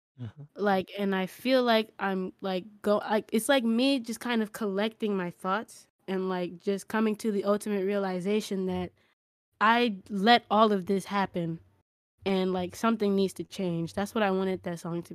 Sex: female